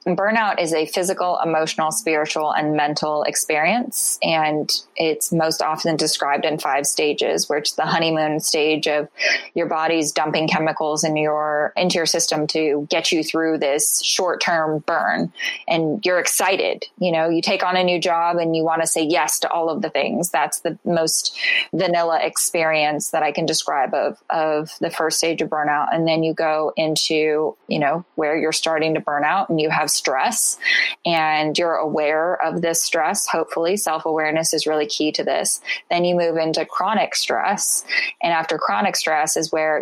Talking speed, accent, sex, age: 180 wpm, American, female, 20-39